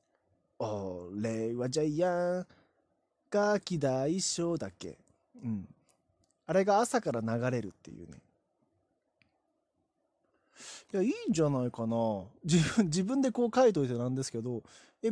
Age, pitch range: 20-39, 115-190 Hz